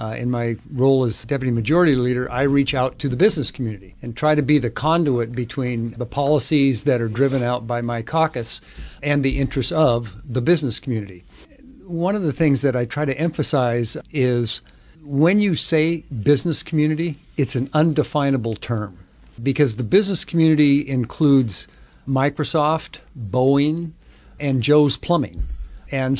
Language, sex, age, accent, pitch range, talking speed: English, male, 50-69, American, 120-150 Hz, 155 wpm